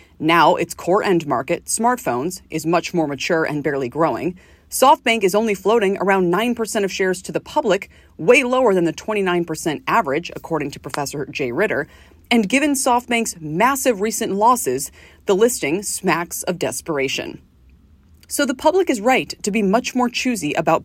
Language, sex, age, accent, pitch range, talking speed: English, female, 30-49, American, 165-240 Hz, 165 wpm